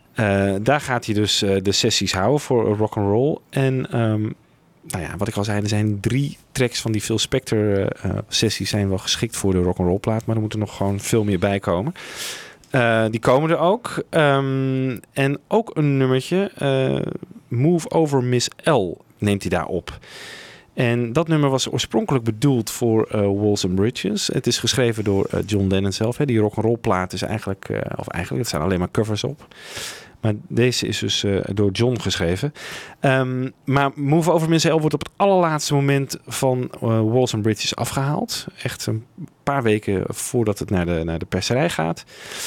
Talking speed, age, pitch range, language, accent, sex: 195 wpm, 40-59, 100-135 Hz, Dutch, Dutch, male